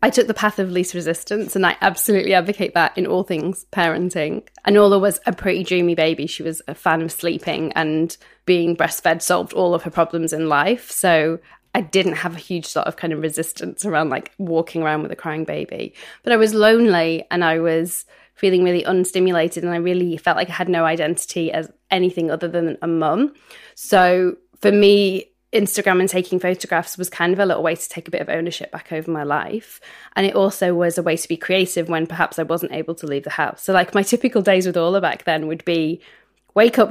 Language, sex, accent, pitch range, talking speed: English, female, British, 165-200 Hz, 220 wpm